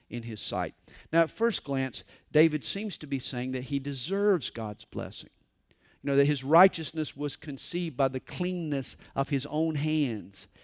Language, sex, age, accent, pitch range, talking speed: English, male, 50-69, American, 140-205 Hz, 175 wpm